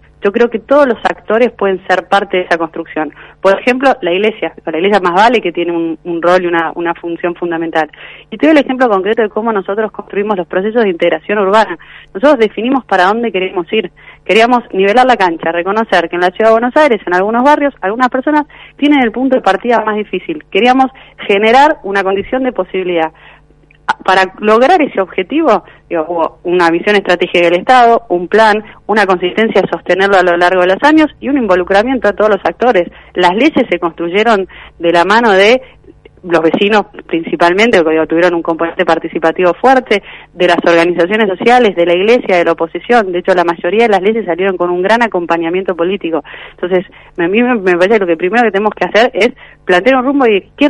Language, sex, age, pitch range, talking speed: Spanish, female, 30-49, 175-230 Hz, 200 wpm